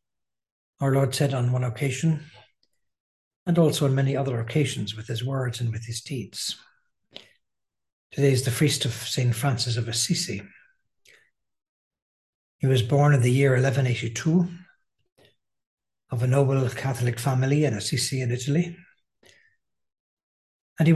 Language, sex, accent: English, male, Irish